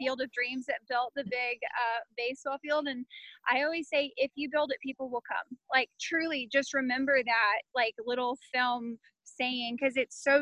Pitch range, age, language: 245-300 Hz, 10-29, English